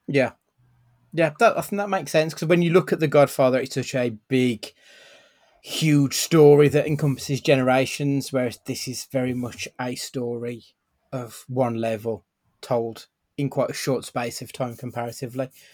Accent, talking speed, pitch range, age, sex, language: British, 165 wpm, 130-155 Hz, 30-49, male, English